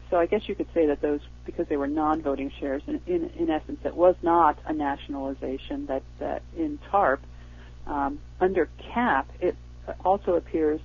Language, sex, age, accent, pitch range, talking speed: English, female, 40-59, American, 135-170 Hz, 175 wpm